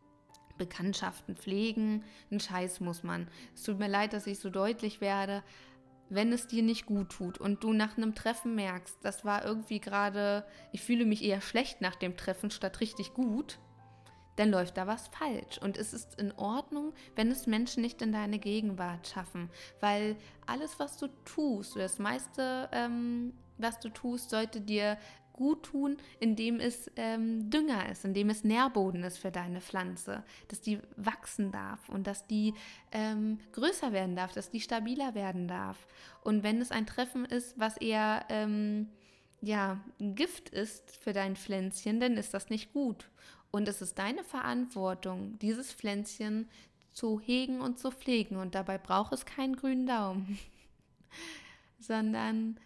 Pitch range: 195-235 Hz